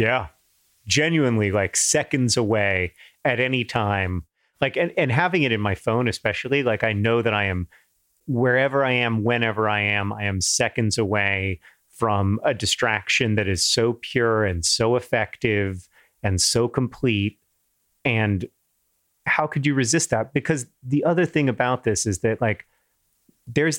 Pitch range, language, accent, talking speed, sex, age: 105-125 Hz, English, American, 155 wpm, male, 30-49